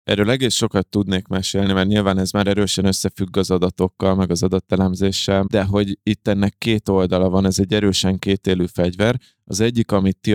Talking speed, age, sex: 185 wpm, 20-39, male